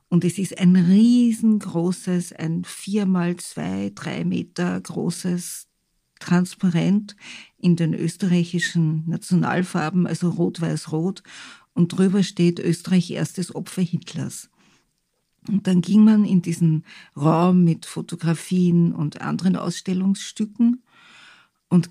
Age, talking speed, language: 50-69, 105 wpm, German